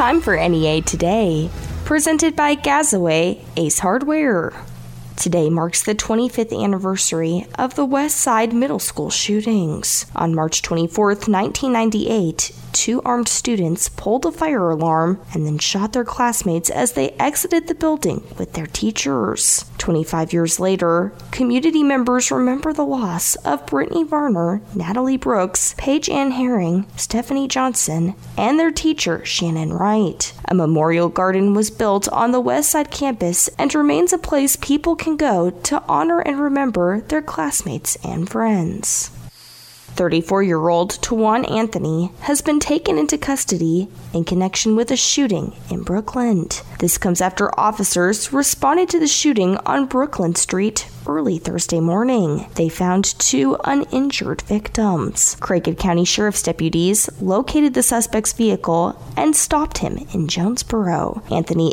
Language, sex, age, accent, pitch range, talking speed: English, female, 20-39, American, 170-270 Hz, 135 wpm